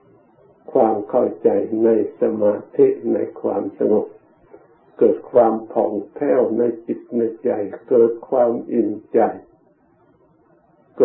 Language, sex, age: Thai, male, 60-79